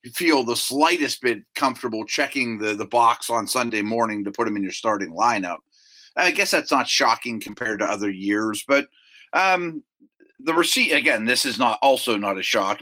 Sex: male